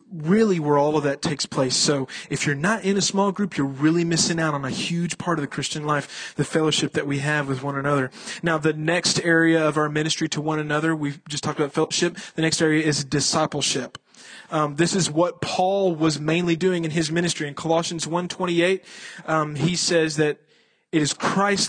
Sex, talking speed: male, 215 wpm